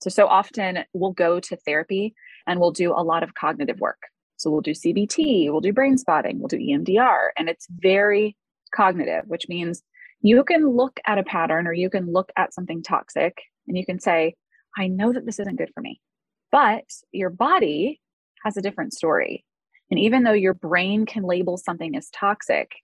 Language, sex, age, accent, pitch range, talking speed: English, female, 20-39, American, 170-225 Hz, 195 wpm